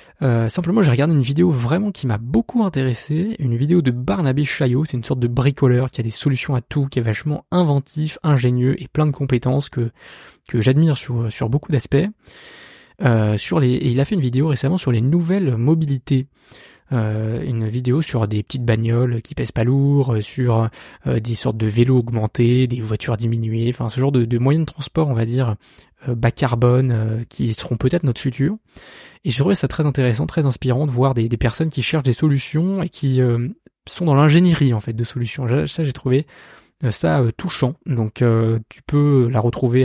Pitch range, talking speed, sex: 115-145 Hz, 205 wpm, male